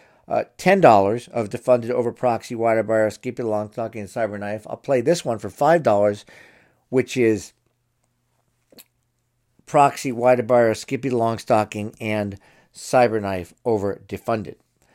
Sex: male